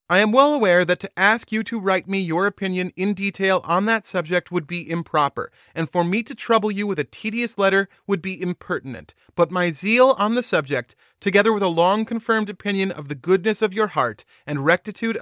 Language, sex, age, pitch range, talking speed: English, male, 30-49, 150-200 Hz, 210 wpm